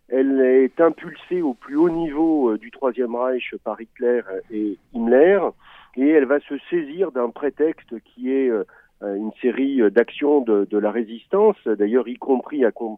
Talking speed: 155 wpm